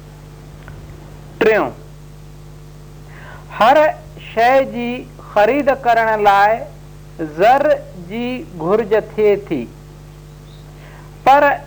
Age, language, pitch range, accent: 60-79, Hindi, 150-240 Hz, native